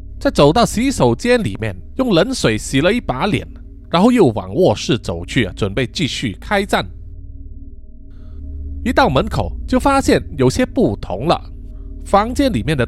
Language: Chinese